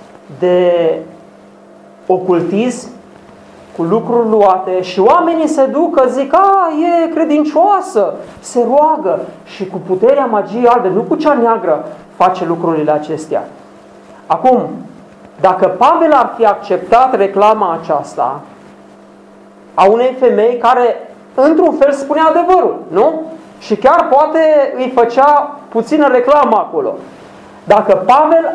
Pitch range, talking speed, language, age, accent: 210-285 Hz, 115 wpm, Romanian, 40-59, native